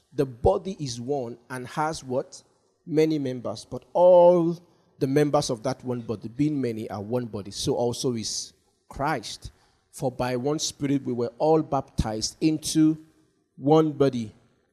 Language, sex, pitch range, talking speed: English, male, 125-155 Hz, 150 wpm